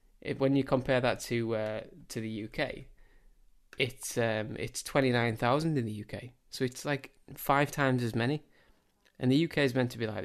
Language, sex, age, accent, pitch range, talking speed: English, male, 20-39, British, 115-135 Hz, 200 wpm